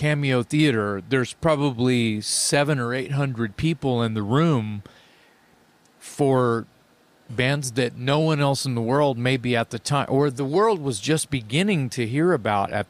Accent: American